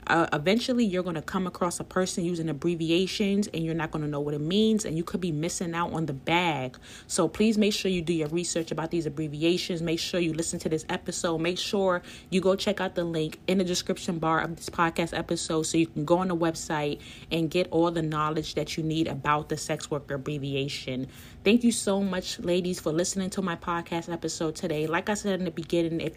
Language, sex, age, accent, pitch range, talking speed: English, female, 30-49, American, 160-185 Hz, 235 wpm